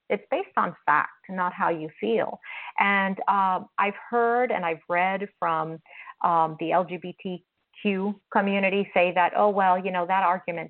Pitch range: 170-210 Hz